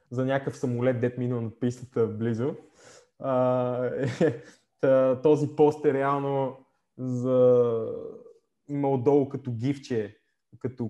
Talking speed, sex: 100 wpm, male